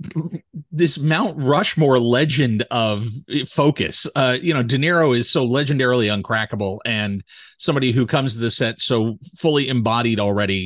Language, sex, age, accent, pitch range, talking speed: English, male, 40-59, American, 110-150 Hz, 145 wpm